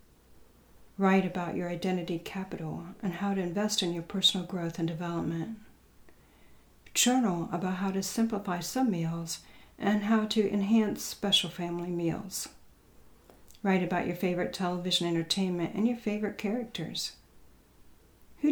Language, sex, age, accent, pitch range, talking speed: English, female, 60-79, American, 170-200 Hz, 130 wpm